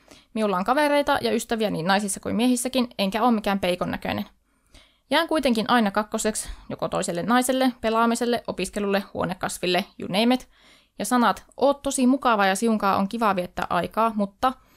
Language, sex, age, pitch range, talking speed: Finnish, female, 20-39, 200-250 Hz, 155 wpm